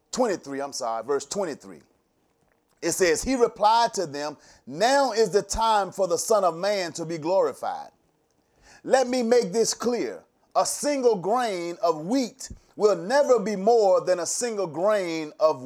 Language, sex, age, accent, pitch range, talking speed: English, male, 30-49, American, 170-250 Hz, 160 wpm